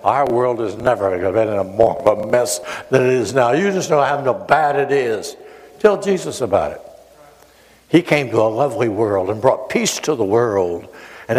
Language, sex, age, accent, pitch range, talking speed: English, male, 60-79, American, 120-175 Hz, 210 wpm